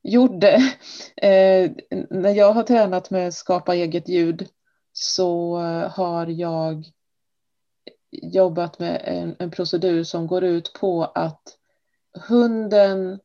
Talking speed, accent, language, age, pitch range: 115 wpm, native, Swedish, 30-49, 160-185 Hz